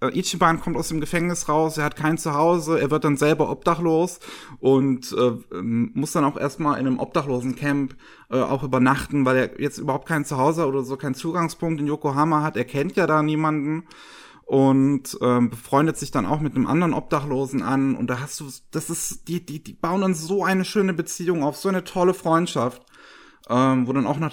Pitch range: 125-155 Hz